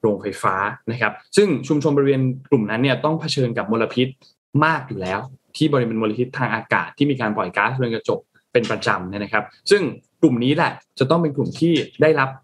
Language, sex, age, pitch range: Thai, male, 20-39, 120-155 Hz